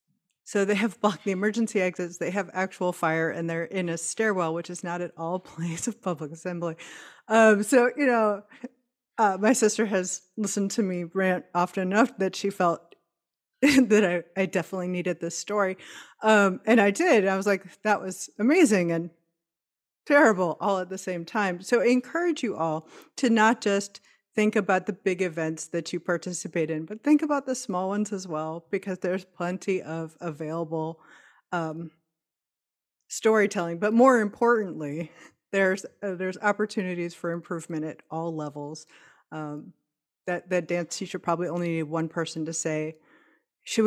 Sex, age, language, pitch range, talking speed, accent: female, 30-49, English, 170-215 Hz, 170 wpm, American